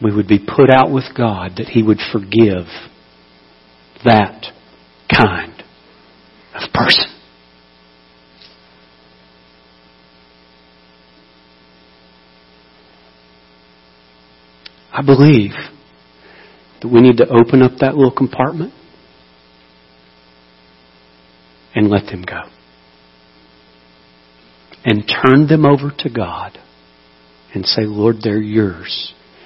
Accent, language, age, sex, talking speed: American, English, 50-69, male, 85 wpm